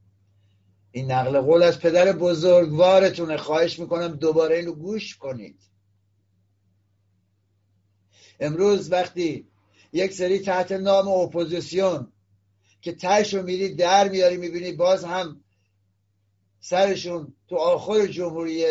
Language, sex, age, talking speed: Persian, male, 60-79, 105 wpm